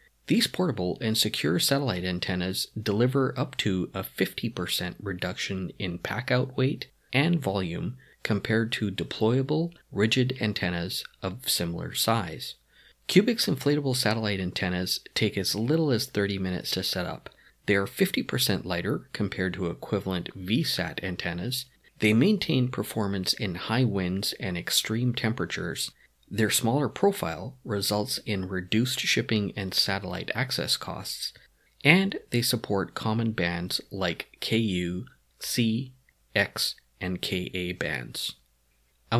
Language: English